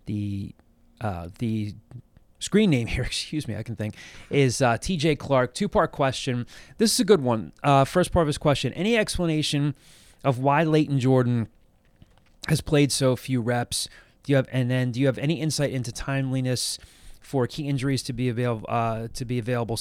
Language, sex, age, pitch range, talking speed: English, male, 20-39, 115-145 Hz, 190 wpm